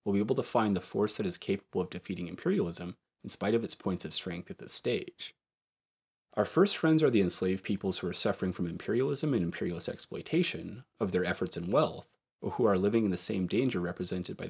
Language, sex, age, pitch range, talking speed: English, male, 30-49, 90-115 Hz, 220 wpm